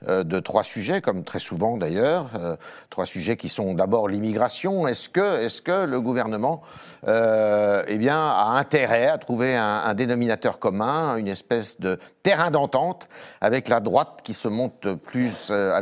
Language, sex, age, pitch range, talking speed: French, male, 50-69, 105-140 Hz, 165 wpm